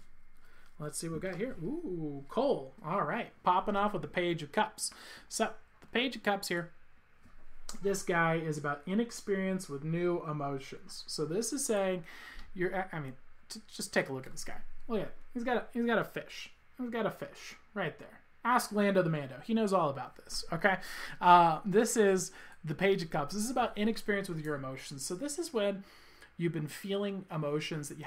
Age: 20-39